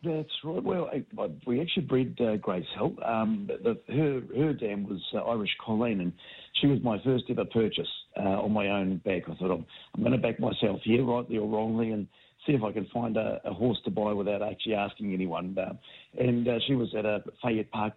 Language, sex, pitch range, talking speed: English, male, 100-120 Hz, 225 wpm